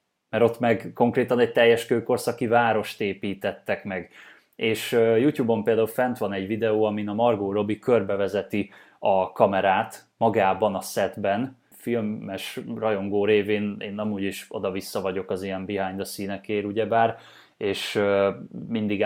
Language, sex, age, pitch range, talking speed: Hungarian, male, 20-39, 100-120 Hz, 135 wpm